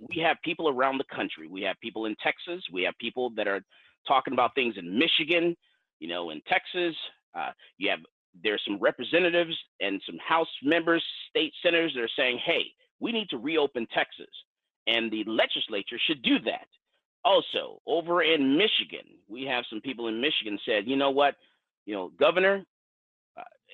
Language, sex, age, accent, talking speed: English, male, 40-59, American, 175 wpm